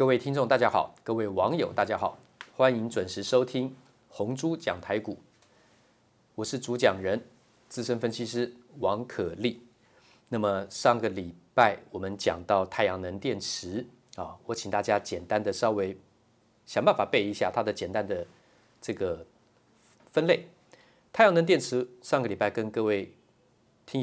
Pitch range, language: 105-130 Hz, Chinese